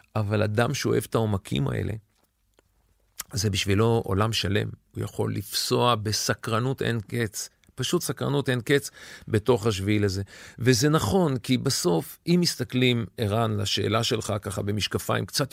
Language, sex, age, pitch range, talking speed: Hebrew, male, 40-59, 105-145 Hz, 135 wpm